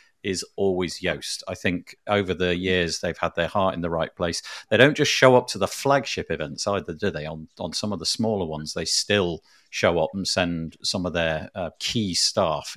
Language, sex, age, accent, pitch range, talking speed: English, male, 50-69, British, 90-125 Hz, 220 wpm